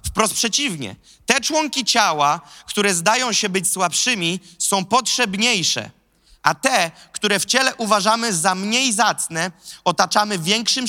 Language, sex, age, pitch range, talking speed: Polish, male, 20-39, 180-235 Hz, 125 wpm